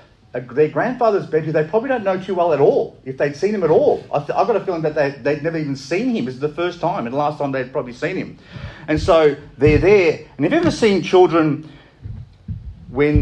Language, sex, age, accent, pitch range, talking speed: English, male, 40-59, Australian, 120-150 Hz, 250 wpm